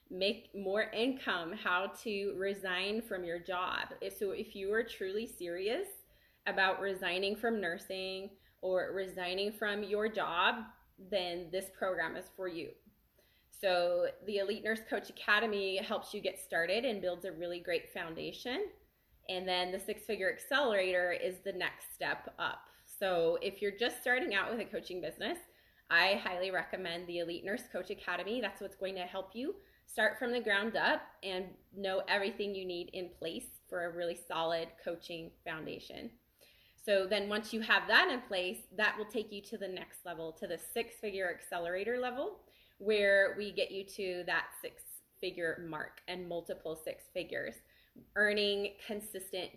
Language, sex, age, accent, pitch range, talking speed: English, female, 20-39, American, 180-215 Hz, 160 wpm